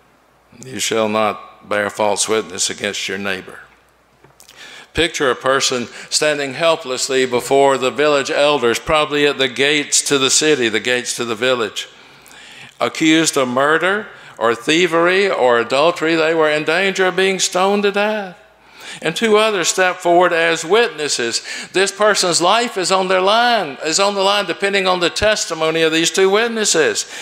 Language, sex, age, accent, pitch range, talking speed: English, male, 60-79, American, 140-190 Hz, 160 wpm